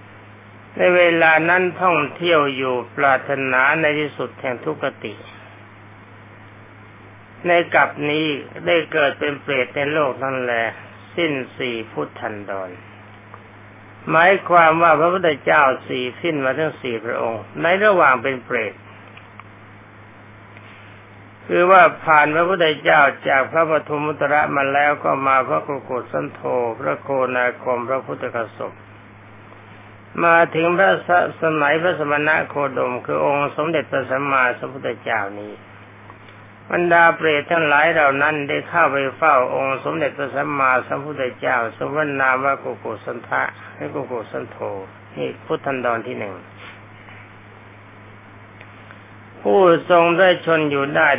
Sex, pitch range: male, 105-150 Hz